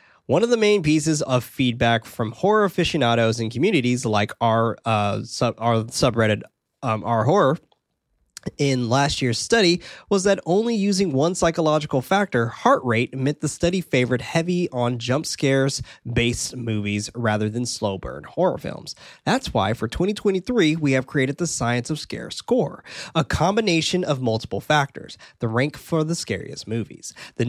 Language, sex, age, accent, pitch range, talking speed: English, male, 20-39, American, 120-170 Hz, 160 wpm